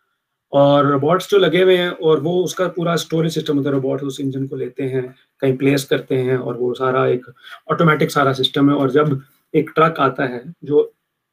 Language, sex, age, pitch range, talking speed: Urdu, male, 30-49, 135-175 Hz, 210 wpm